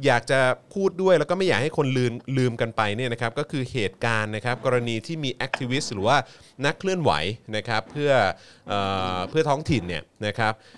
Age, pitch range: 20-39, 110-145 Hz